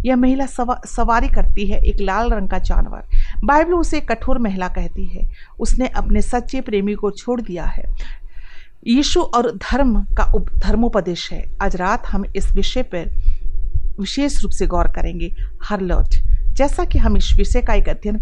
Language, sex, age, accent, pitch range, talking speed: Hindi, female, 40-59, native, 195-260 Hz, 175 wpm